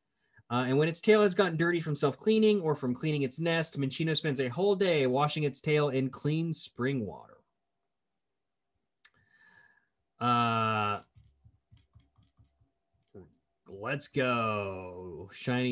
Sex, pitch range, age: male, 130-180 Hz, 20-39